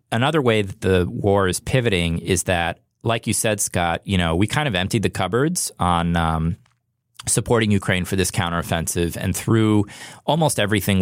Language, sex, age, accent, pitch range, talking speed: English, male, 20-39, American, 85-105 Hz, 175 wpm